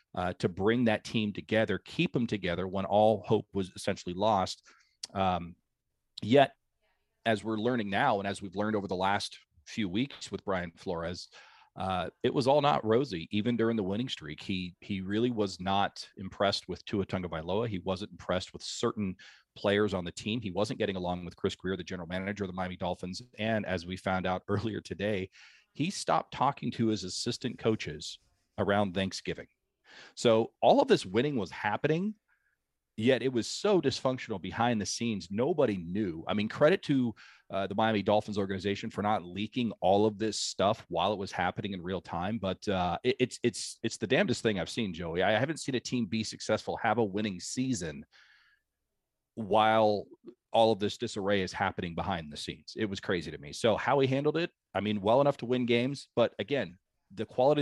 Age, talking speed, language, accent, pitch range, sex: 40-59, 195 wpm, English, American, 95-115 Hz, male